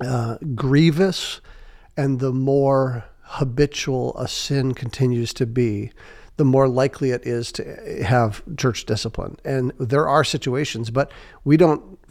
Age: 50-69